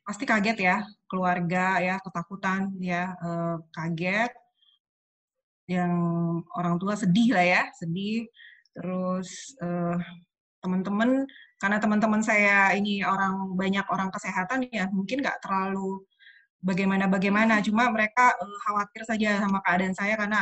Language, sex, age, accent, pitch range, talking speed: Indonesian, female, 20-39, native, 180-220 Hz, 120 wpm